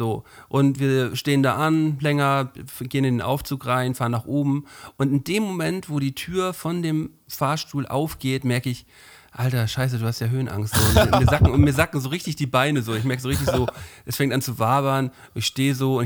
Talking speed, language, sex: 230 wpm, German, male